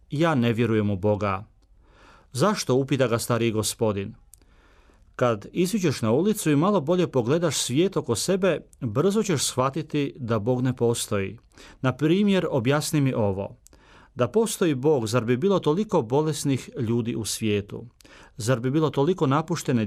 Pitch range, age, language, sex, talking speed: 110-150 Hz, 40-59, Croatian, male, 150 wpm